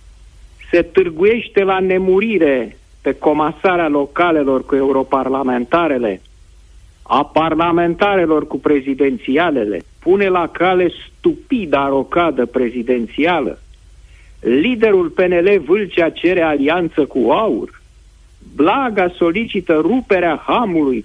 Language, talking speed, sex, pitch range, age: Romanian, 85 wpm, male, 120-195 Hz, 50-69